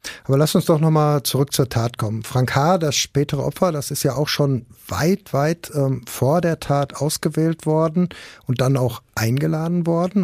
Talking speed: 195 wpm